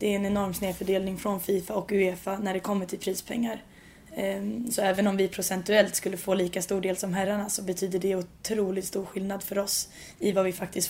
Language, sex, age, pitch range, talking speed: English, female, 10-29, 190-205 Hz, 210 wpm